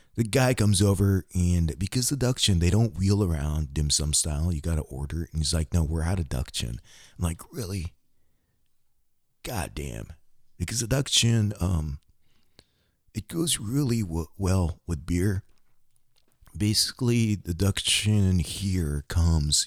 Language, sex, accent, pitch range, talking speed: English, male, American, 75-100 Hz, 160 wpm